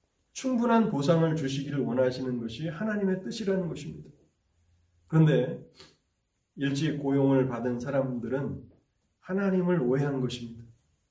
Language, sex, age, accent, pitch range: Korean, male, 30-49, native, 120-180 Hz